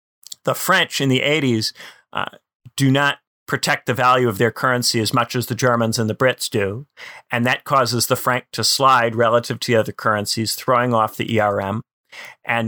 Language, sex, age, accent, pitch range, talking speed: English, male, 40-59, American, 115-135 Hz, 190 wpm